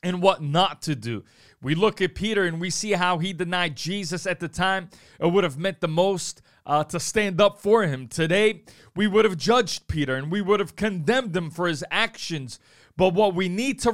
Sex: male